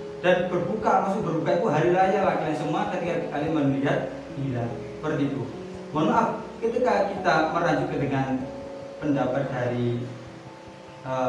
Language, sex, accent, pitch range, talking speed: Indonesian, male, native, 140-185 Hz, 135 wpm